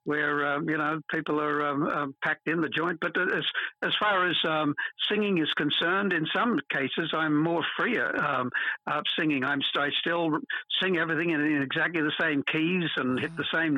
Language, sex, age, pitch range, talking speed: English, male, 60-79, 140-160 Hz, 190 wpm